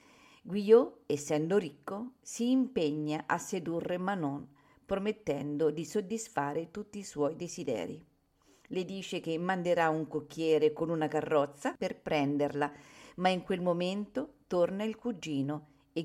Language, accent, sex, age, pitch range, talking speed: Italian, native, female, 50-69, 155-210 Hz, 125 wpm